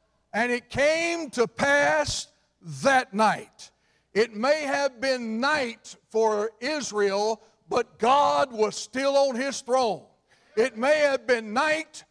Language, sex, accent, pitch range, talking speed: English, male, American, 235-290 Hz, 130 wpm